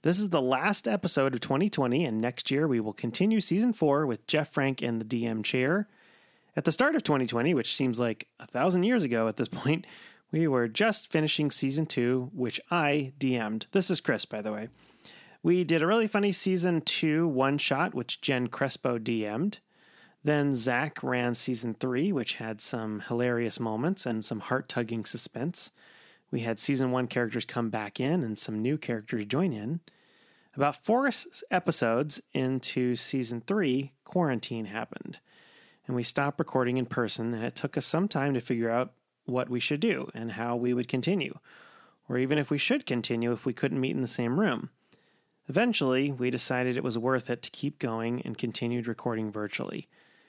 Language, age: English, 30-49